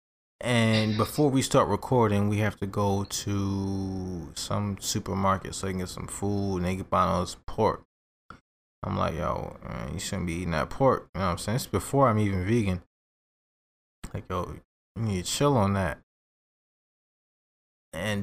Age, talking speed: 20-39, 175 wpm